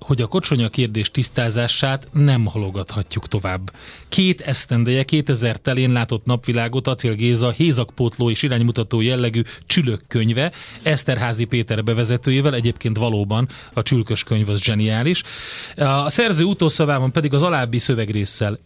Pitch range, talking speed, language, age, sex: 115-155 Hz, 120 wpm, Hungarian, 30-49, male